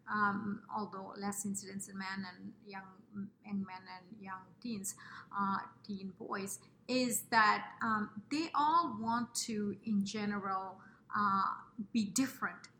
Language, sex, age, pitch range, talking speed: English, female, 30-49, 195-235 Hz, 130 wpm